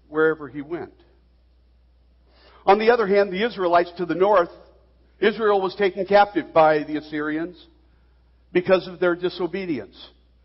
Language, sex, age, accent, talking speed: English, male, 60-79, American, 130 wpm